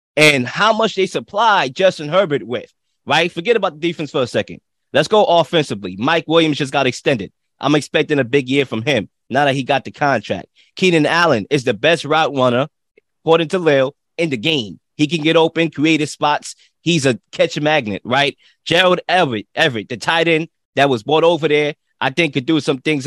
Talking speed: 205 wpm